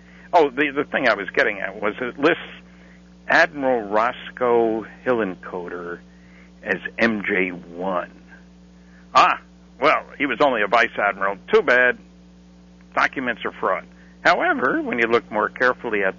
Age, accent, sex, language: 60-79, American, male, English